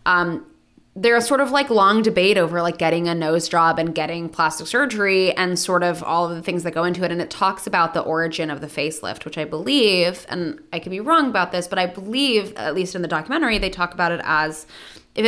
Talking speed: 245 wpm